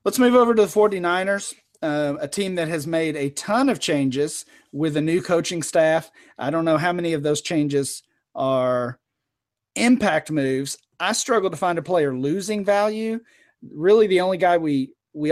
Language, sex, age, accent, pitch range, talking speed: English, male, 40-59, American, 140-175 Hz, 180 wpm